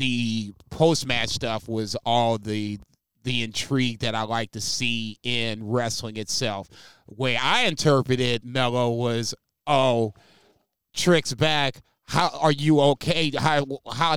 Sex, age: male, 30-49